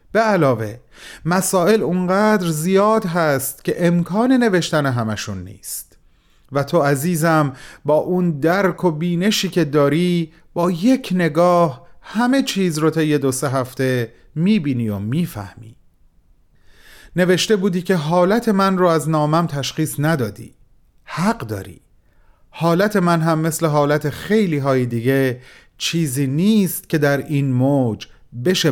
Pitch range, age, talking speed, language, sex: 135-185 Hz, 40-59, 125 wpm, Persian, male